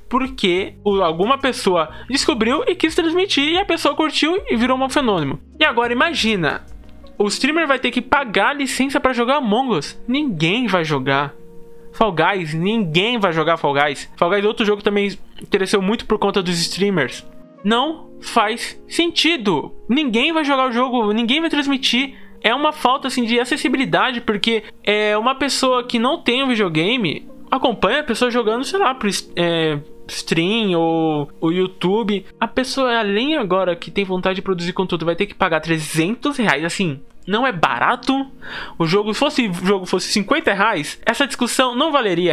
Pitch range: 180-260 Hz